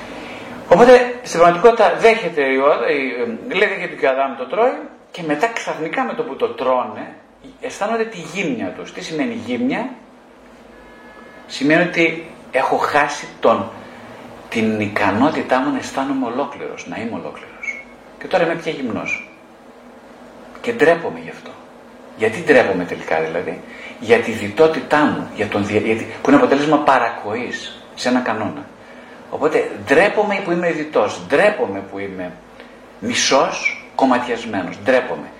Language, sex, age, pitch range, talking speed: Greek, male, 50-69, 155-250 Hz, 130 wpm